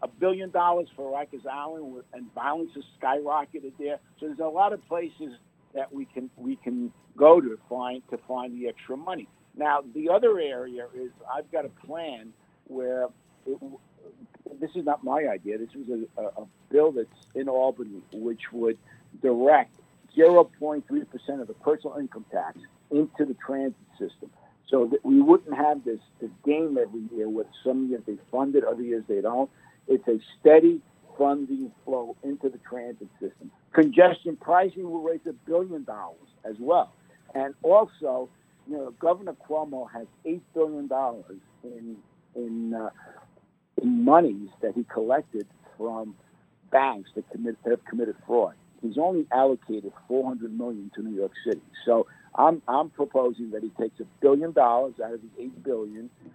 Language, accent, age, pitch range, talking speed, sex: English, American, 60-79, 120-165 Hz, 165 wpm, male